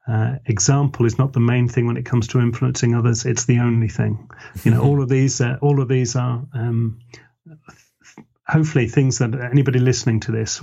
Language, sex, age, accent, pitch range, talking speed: English, male, 40-59, British, 110-125 Hz, 205 wpm